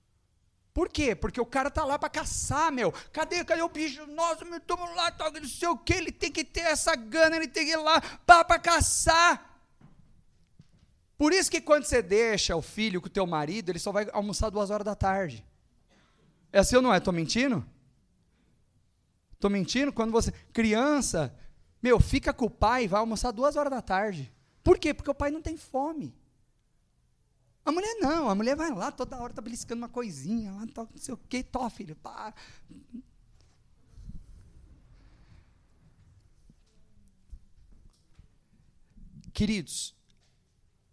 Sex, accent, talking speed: male, Brazilian, 160 wpm